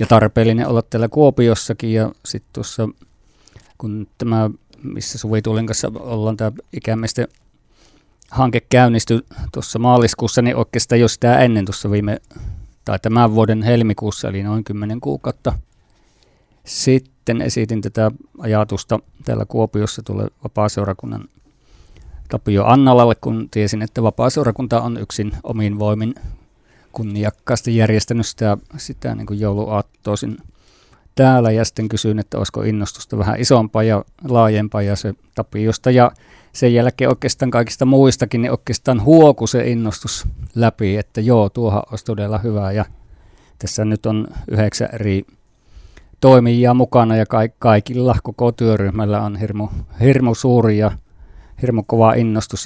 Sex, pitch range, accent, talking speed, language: male, 105-120 Hz, native, 130 wpm, Finnish